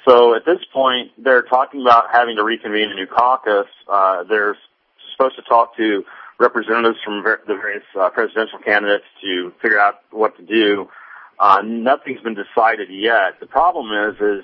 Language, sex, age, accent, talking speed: English, male, 40-59, American, 170 wpm